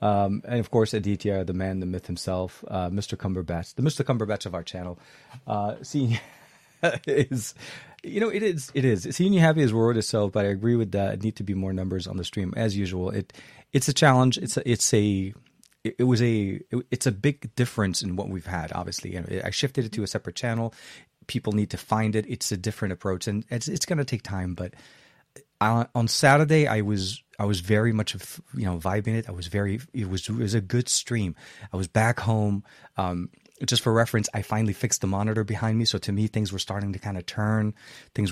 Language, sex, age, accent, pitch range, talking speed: English, male, 30-49, American, 95-115 Hz, 235 wpm